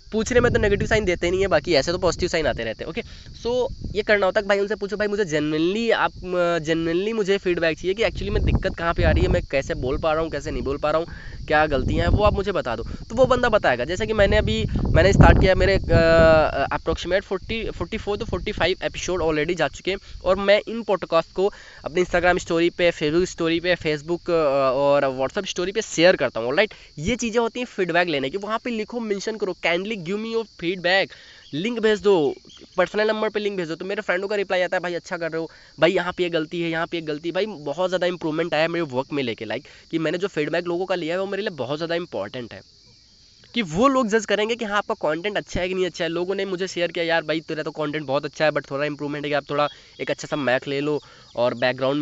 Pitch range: 155-200 Hz